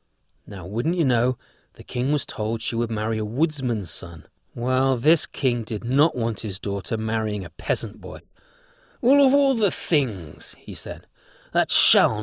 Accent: British